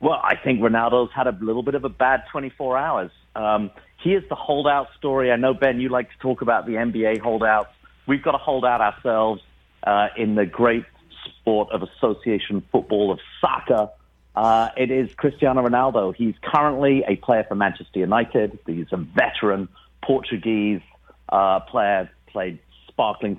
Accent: British